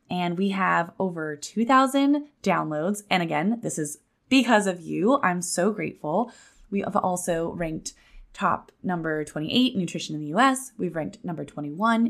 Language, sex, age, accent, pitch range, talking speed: English, female, 20-39, American, 180-240 Hz, 155 wpm